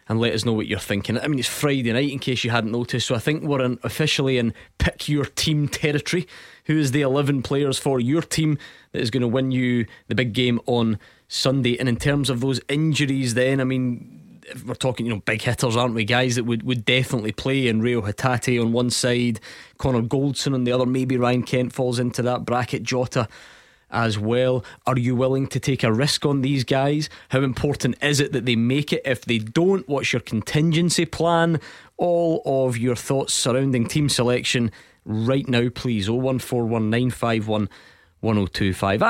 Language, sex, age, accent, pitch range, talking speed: English, male, 20-39, British, 115-135 Hz, 195 wpm